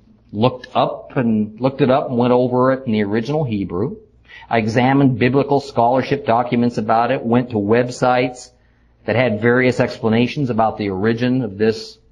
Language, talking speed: English, 165 wpm